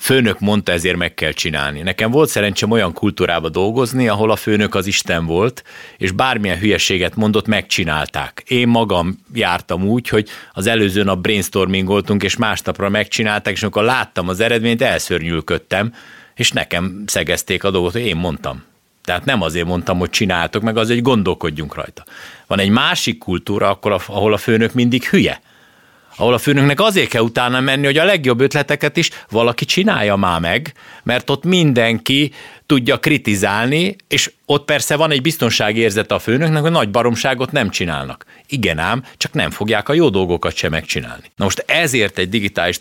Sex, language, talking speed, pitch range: male, Hungarian, 170 wpm, 95-125 Hz